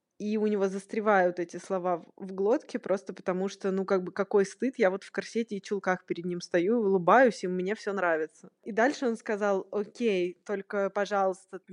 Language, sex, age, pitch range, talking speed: Russian, female, 20-39, 170-205 Hz, 190 wpm